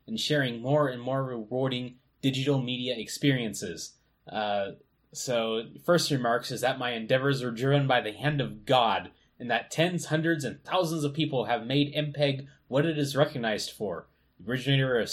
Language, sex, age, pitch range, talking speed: English, male, 20-39, 125-150 Hz, 165 wpm